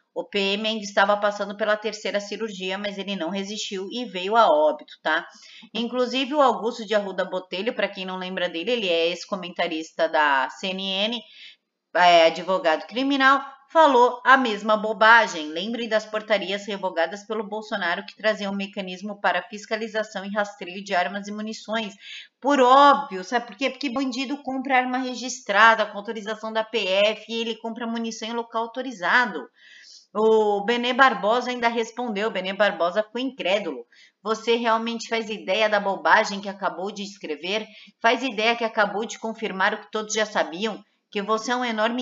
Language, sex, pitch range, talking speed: Portuguese, female, 200-245 Hz, 160 wpm